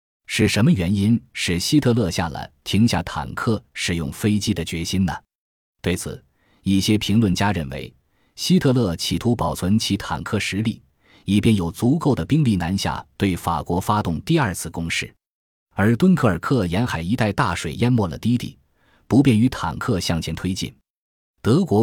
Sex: male